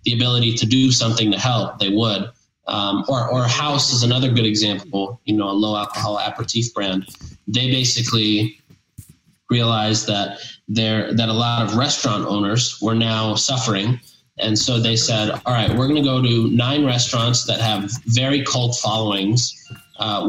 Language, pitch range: English, 110-130 Hz